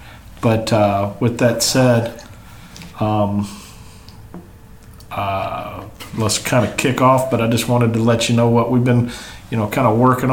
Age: 40-59